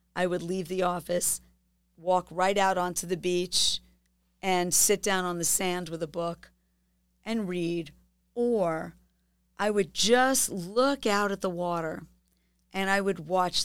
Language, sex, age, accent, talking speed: English, female, 40-59, American, 155 wpm